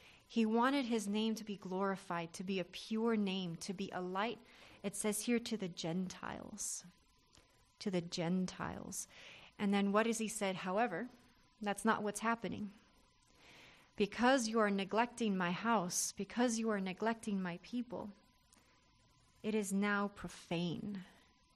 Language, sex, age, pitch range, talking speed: English, female, 30-49, 185-220 Hz, 145 wpm